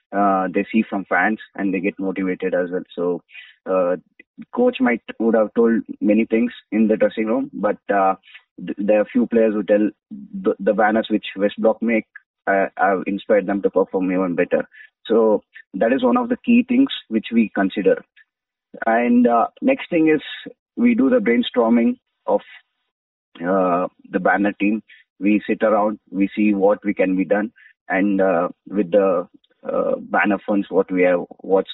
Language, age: English, 20-39